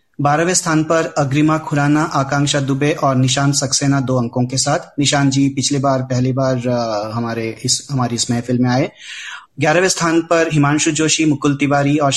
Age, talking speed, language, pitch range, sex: 30-49, 180 wpm, Hindi, 130-150 Hz, male